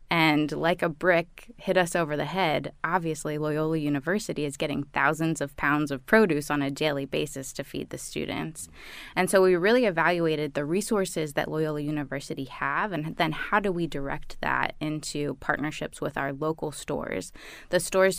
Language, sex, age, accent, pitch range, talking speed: English, female, 20-39, American, 150-180 Hz, 175 wpm